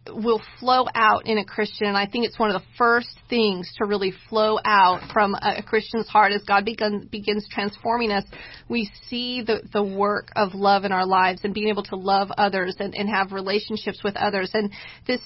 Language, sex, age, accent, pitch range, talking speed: English, female, 40-59, American, 200-230 Hz, 210 wpm